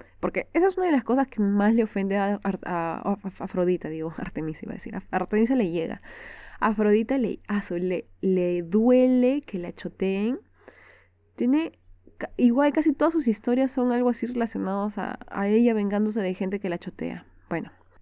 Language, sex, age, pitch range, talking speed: Spanish, female, 20-39, 190-250 Hz, 185 wpm